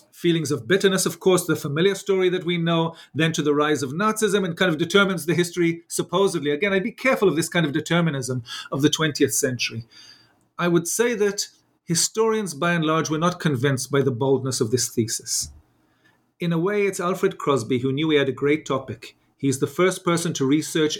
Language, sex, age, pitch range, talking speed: English, male, 40-59, 145-195 Hz, 210 wpm